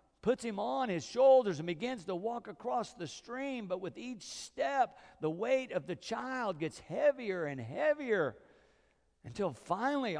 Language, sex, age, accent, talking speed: English, male, 50-69, American, 160 wpm